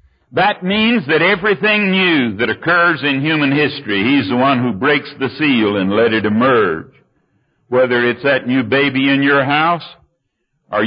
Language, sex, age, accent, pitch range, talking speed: English, male, 60-79, American, 140-190 Hz, 165 wpm